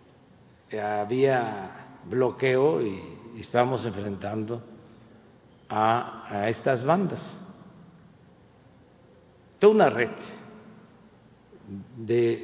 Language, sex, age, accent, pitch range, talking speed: Spanish, male, 50-69, Mexican, 120-155 Hz, 70 wpm